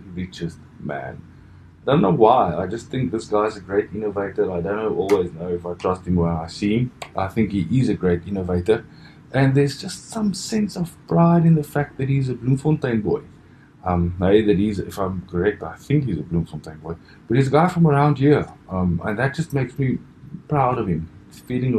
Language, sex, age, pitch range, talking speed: English, male, 20-39, 85-110 Hz, 220 wpm